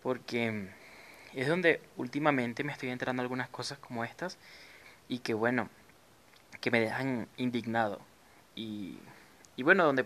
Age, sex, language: 20-39, male, Spanish